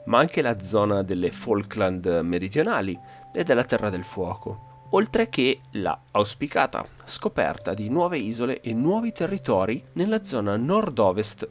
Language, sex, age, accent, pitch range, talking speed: Italian, male, 30-49, native, 95-145 Hz, 135 wpm